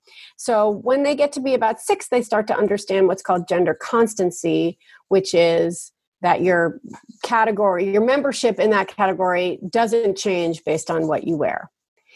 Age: 40-59